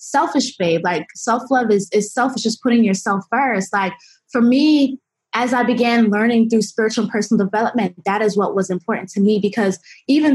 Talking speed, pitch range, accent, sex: 185 wpm, 195-245 Hz, American, female